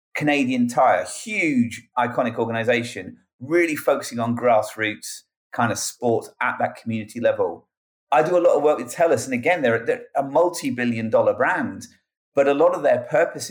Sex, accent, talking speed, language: male, British, 170 wpm, English